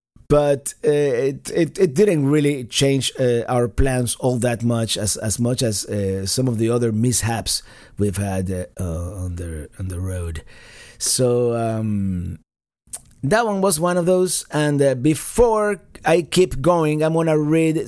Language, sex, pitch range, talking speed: English, male, 120-155 Hz, 170 wpm